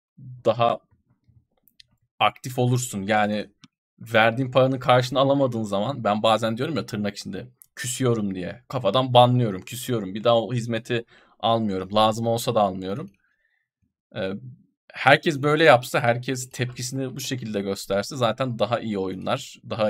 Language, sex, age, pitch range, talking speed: Turkish, male, 40-59, 110-135 Hz, 125 wpm